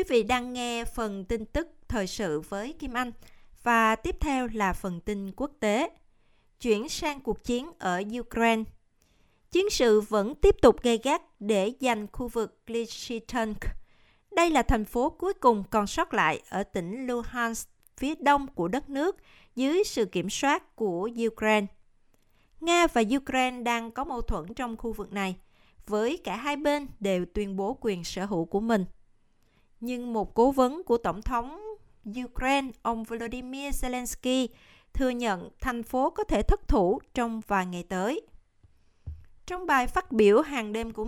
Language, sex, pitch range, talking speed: Vietnamese, female, 210-270 Hz, 165 wpm